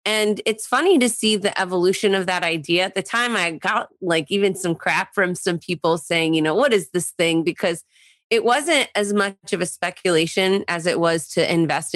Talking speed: 210 wpm